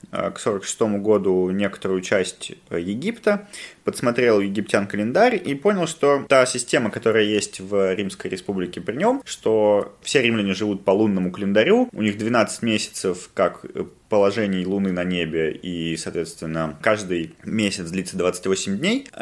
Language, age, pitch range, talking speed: Russian, 20-39, 100-150 Hz, 135 wpm